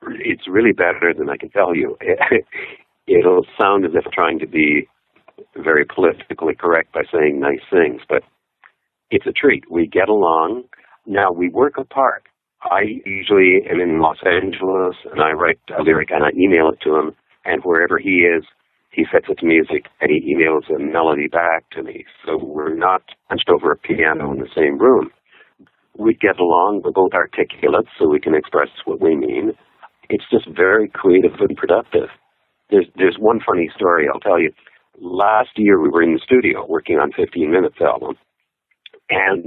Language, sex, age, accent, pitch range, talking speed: English, male, 50-69, American, 345-420 Hz, 180 wpm